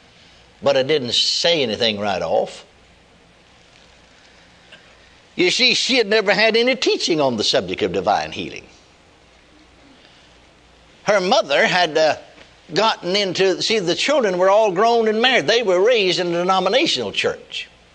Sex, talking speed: male, 140 wpm